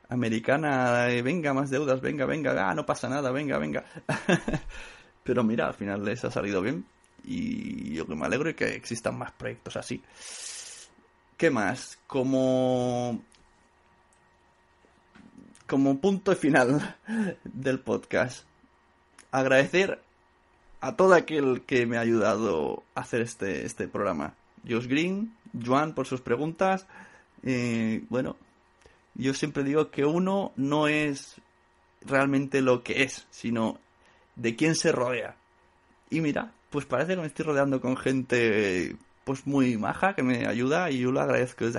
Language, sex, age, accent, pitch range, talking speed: Spanish, male, 30-49, Spanish, 115-160 Hz, 140 wpm